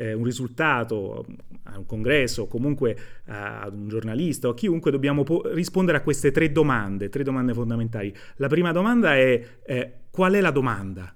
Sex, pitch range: male, 115-170 Hz